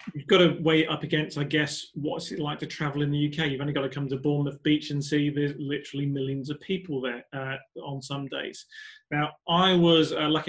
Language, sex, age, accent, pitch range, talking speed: English, male, 30-49, British, 135-155 Hz, 235 wpm